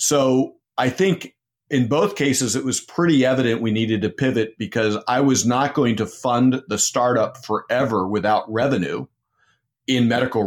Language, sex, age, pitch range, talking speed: English, male, 40-59, 105-130 Hz, 160 wpm